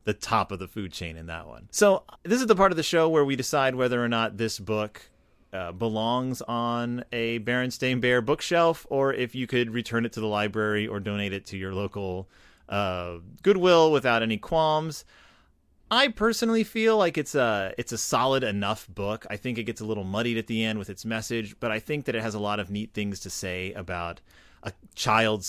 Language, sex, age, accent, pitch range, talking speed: English, male, 30-49, American, 100-130 Hz, 215 wpm